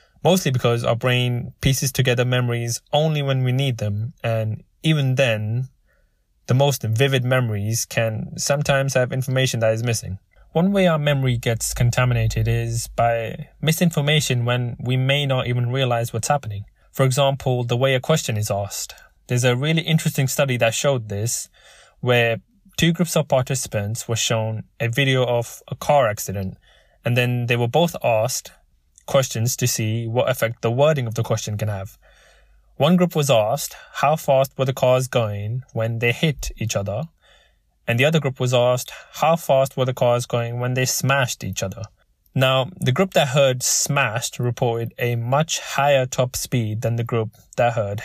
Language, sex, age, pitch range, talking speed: English, male, 20-39, 115-135 Hz, 175 wpm